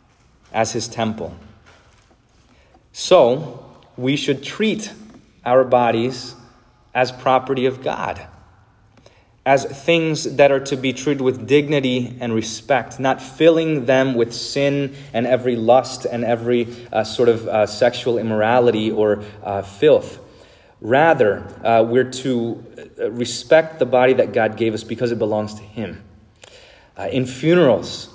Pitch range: 105-130 Hz